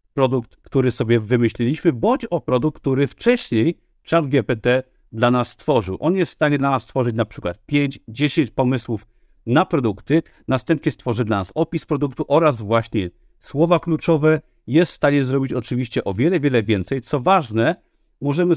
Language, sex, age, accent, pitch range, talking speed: Polish, male, 50-69, native, 120-160 Hz, 160 wpm